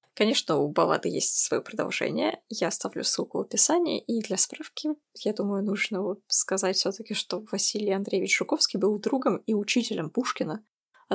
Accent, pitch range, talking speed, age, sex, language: native, 190-255 Hz, 160 wpm, 20-39, female, Russian